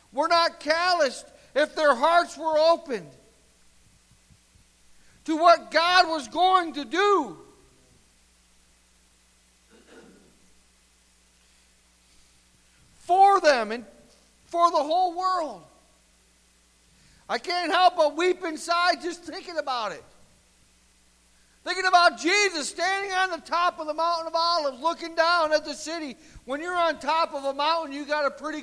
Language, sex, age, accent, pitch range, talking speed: English, male, 60-79, American, 205-335 Hz, 125 wpm